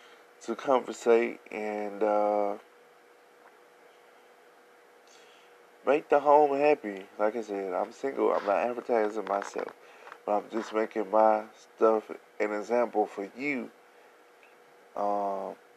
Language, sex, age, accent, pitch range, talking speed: English, male, 20-39, American, 105-115 Hz, 105 wpm